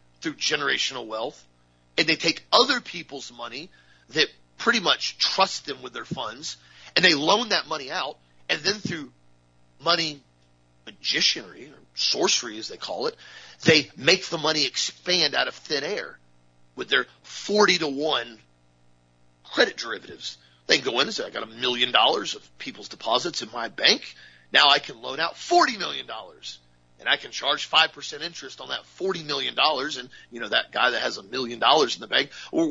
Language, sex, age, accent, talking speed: English, male, 40-59, American, 180 wpm